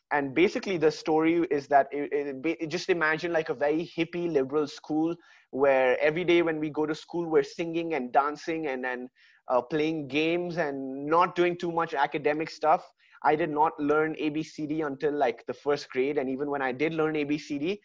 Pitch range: 140-165 Hz